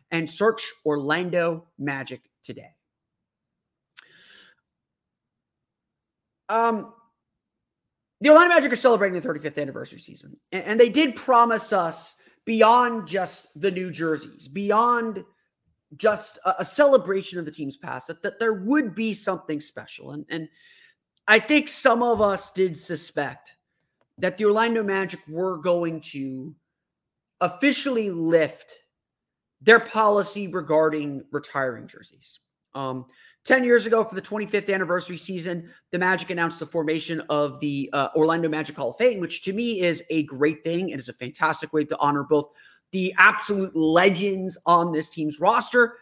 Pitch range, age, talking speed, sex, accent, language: 155-220 Hz, 30-49, 140 wpm, male, American, English